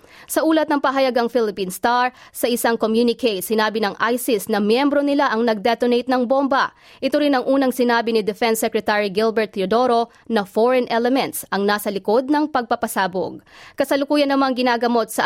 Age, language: 20-39, Filipino